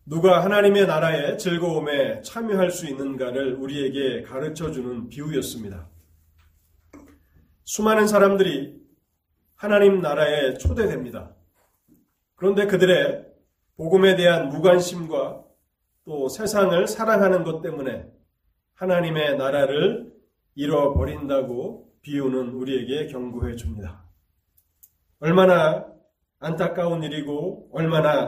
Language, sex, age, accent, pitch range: Korean, male, 30-49, native, 120-180 Hz